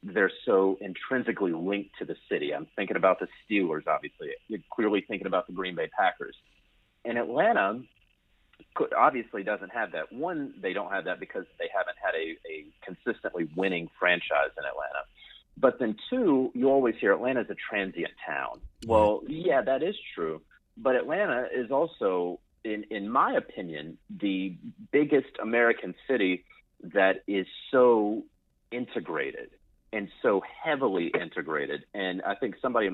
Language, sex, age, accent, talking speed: English, male, 40-59, American, 155 wpm